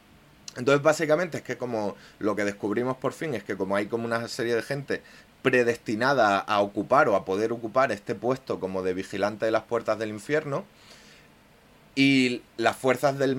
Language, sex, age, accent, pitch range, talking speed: Spanish, male, 30-49, Spanish, 105-125 Hz, 180 wpm